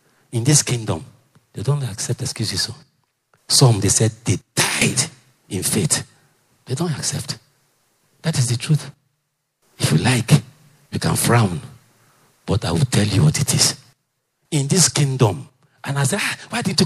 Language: English